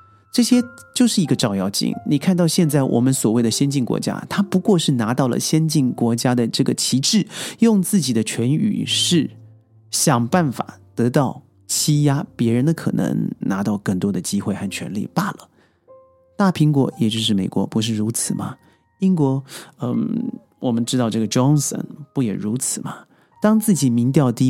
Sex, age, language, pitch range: male, 30-49, Chinese, 120-170 Hz